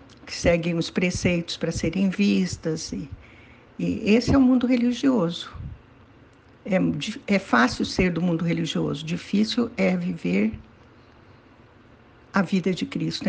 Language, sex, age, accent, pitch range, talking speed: Portuguese, female, 60-79, Brazilian, 160-230 Hz, 120 wpm